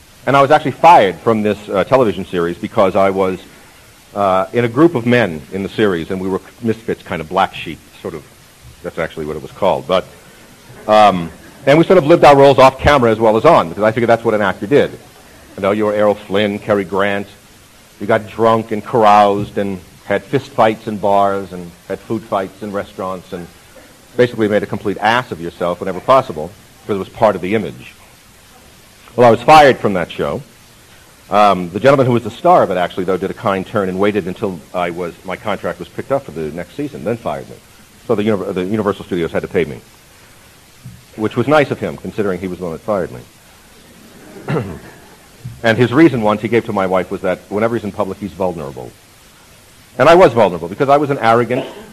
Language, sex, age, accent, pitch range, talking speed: English, male, 50-69, American, 95-115 Hz, 220 wpm